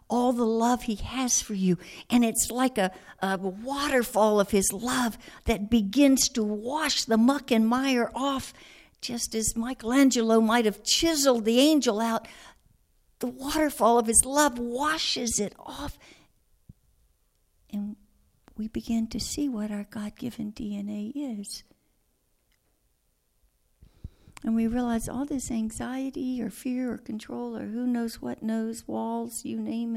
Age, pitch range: 60-79, 210-250 Hz